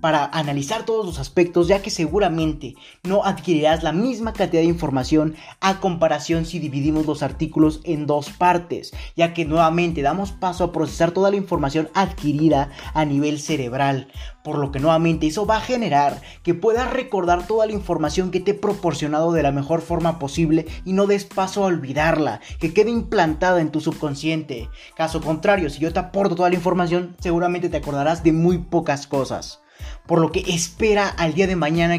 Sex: male